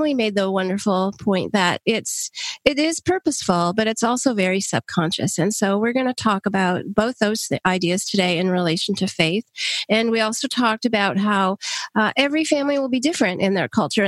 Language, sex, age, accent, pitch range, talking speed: English, female, 40-59, American, 190-230 Hz, 195 wpm